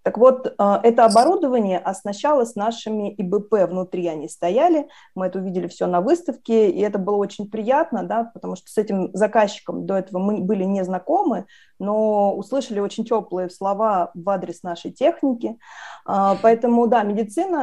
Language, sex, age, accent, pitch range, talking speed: Russian, female, 20-39, native, 185-230 Hz, 155 wpm